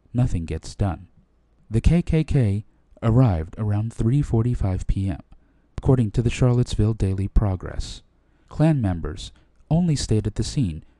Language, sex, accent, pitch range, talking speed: English, male, American, 90-130 Hz, 120 wpm